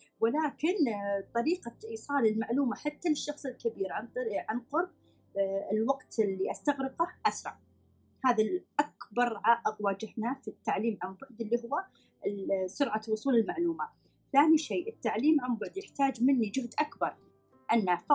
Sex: female